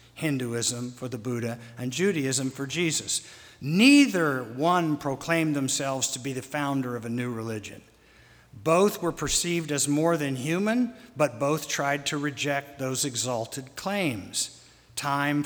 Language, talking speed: English, 140 wpm